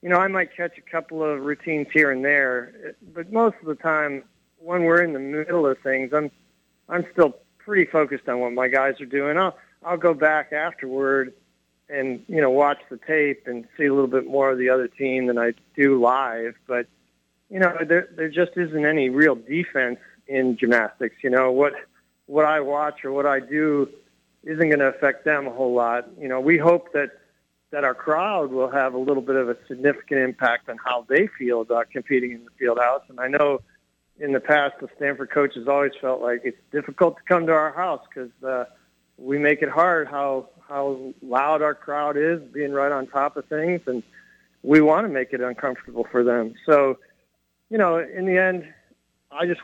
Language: English